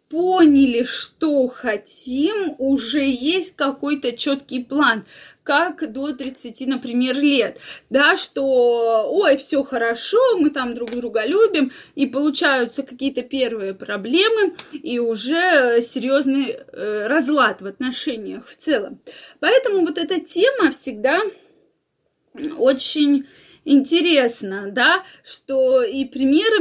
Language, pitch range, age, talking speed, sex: Russian, 250-315 Hz, 20-39, 105 wpm, female